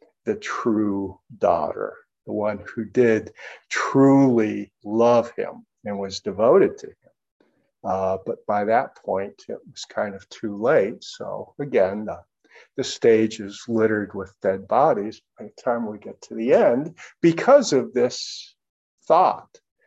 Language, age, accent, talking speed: English, 50-69, American, 145 wpm